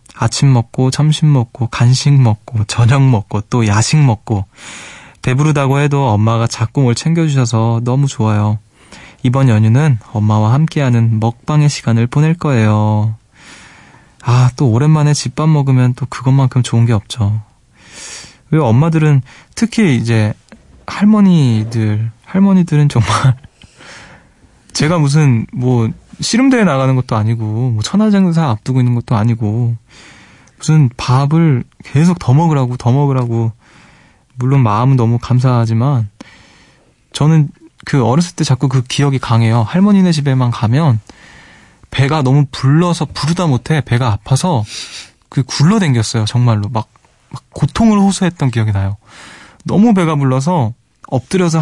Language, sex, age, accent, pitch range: Korean, male, 20-39, native, 115-150 Hz